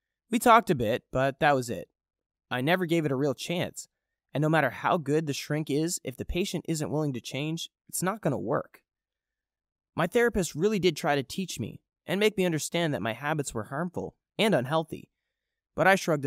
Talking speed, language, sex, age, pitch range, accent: 205 wpm, English, male, 20-39, 125-175 Hz, American